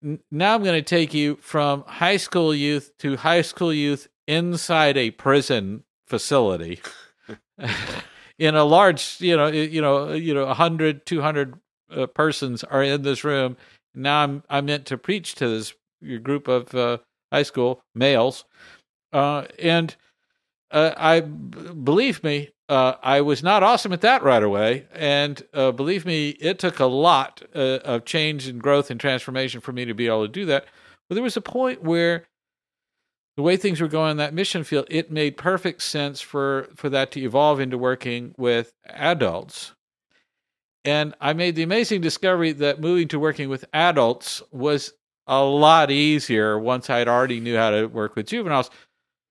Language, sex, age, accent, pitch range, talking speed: English, male, 50-69, American, 135-170 Hz, 170 wpm